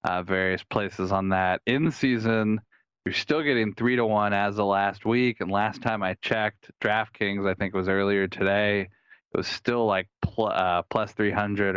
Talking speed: 190 wpm